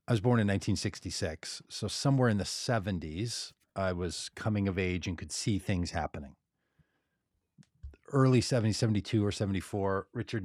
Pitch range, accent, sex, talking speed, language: 95-130 Hz, American, male, 150 wpm, English